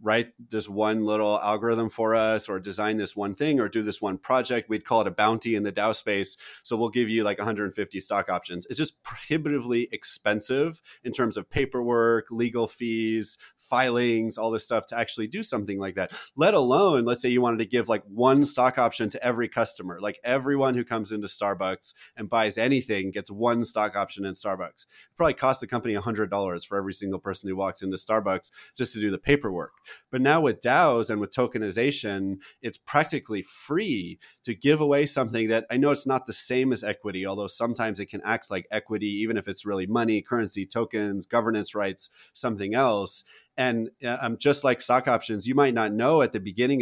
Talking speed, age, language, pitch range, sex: 200 wpm, 30-49, English, 100-120 Hz, male